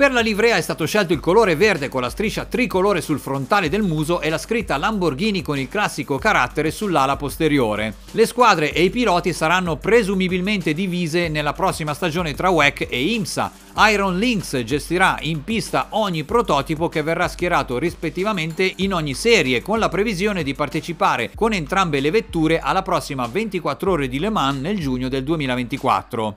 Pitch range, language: 145-200 Hz, Italian